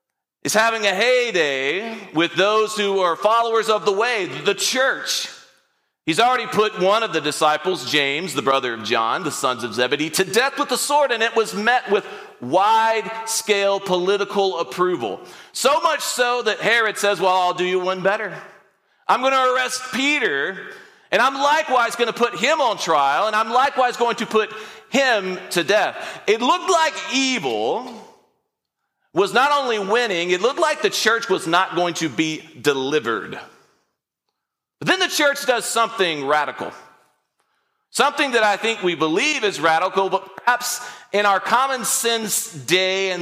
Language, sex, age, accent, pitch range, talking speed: English, male, 40-59, American, 185-245 Hz, 165 wpm